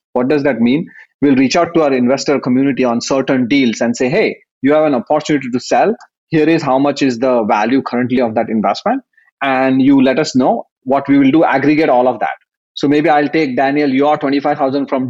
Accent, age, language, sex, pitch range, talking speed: Indian, 30-49, English, male, 130-160 Hz, 225 wpm